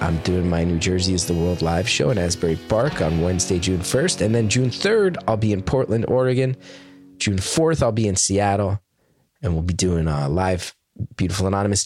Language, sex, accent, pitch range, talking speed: English, male, American, 95-135 Hz, 200 wpm